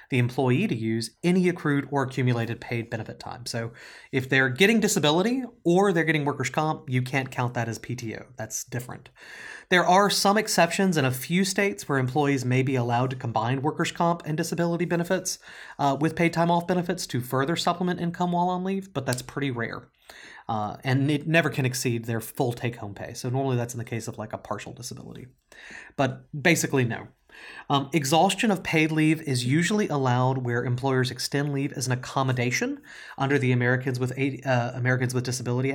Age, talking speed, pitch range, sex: 30-49, 190 wpm, 125-160 Hz, male